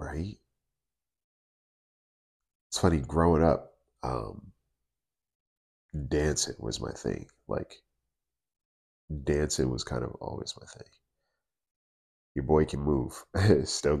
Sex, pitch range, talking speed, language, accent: male, 65-80 Hz, 100 wpm, English, American